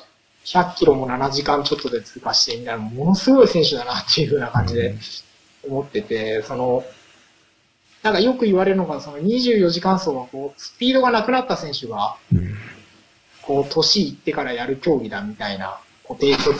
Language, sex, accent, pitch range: Japanese, male, native, 115-170 Hz